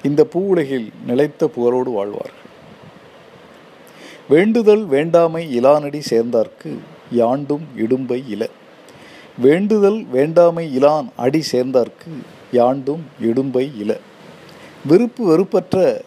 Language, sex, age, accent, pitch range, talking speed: Tamil, male, 50-69, native, 135-180 Hz, 85 wpm